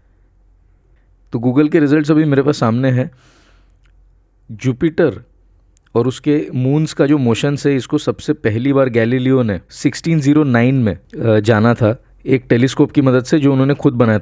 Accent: native